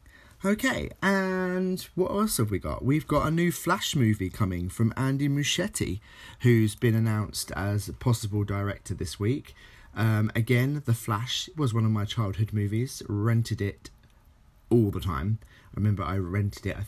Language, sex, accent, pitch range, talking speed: English, male, British, 100-115 Hz, 165 wpm